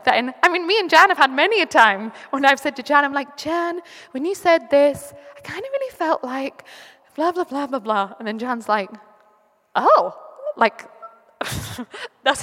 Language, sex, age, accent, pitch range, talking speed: English, female, 20-39, British, 225-295 Hz, 200 wpm